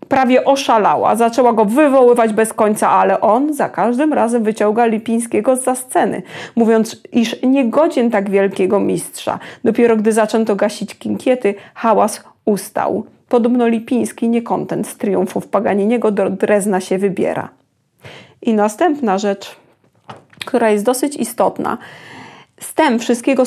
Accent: native